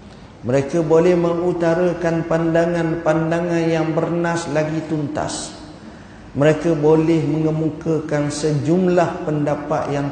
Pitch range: 130-170 Hz